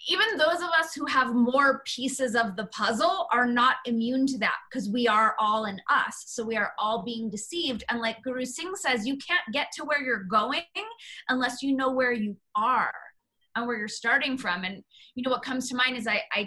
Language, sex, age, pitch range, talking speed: English, female, 20-39, 225-265 Hz, 220 wpm